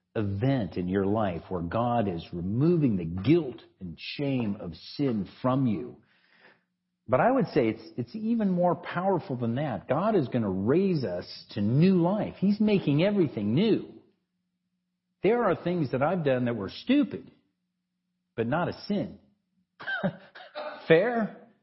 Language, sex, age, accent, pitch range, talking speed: English, male, 50-69, American, 125-190 Hz, 150 wpm